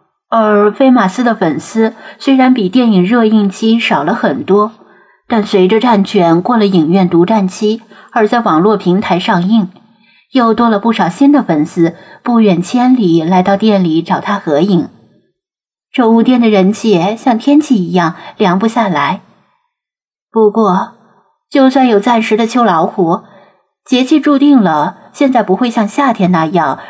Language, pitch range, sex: Chinese, 190-245 Hz, female